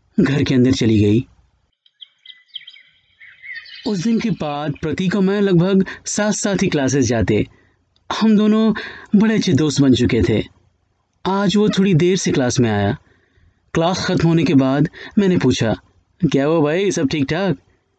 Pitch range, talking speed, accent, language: 120-195 Hz, 155 wpm, native, Hindi